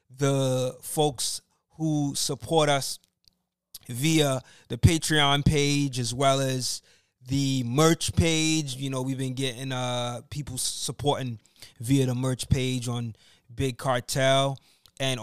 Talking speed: 120 wpm